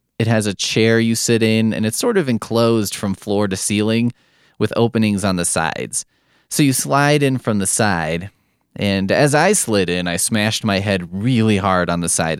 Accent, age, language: American, 20-39, English